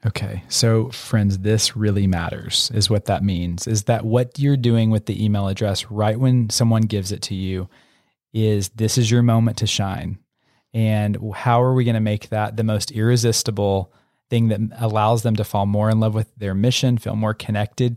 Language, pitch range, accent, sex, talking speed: English, 105-125 Hz, American, male, 195 wpm